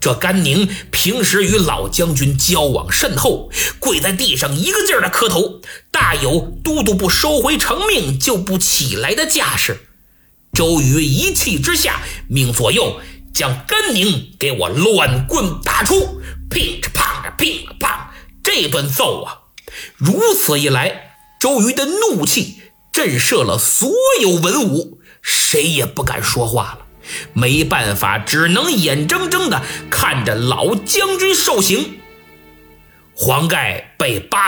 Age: 50-69